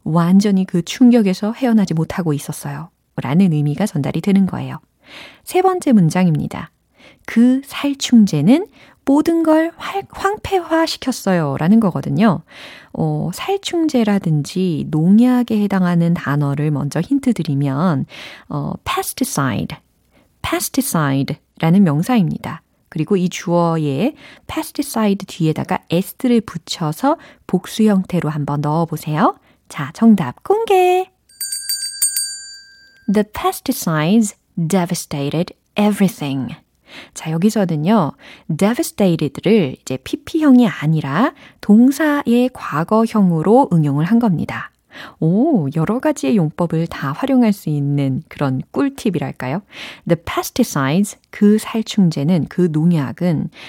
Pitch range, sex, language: 160-265 Hz, female, Korean